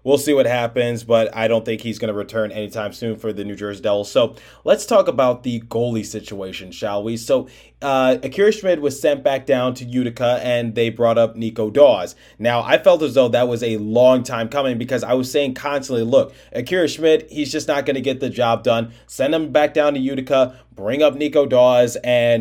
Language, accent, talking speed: English, American, 220 wpm